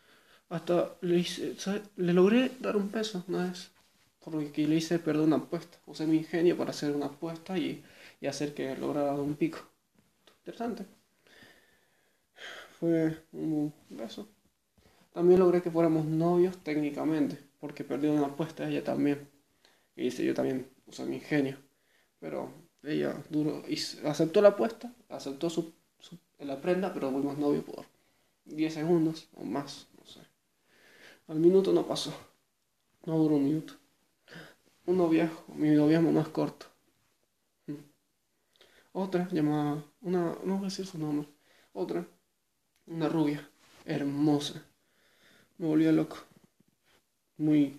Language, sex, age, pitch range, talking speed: Spanish, male, 20-39, 150-175 Hz, 140 wpm